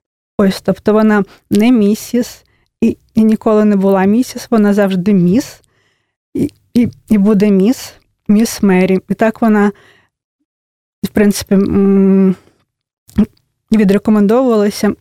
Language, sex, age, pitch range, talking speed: Russian, female, 20-39, 195-215 Hz, 110 wpm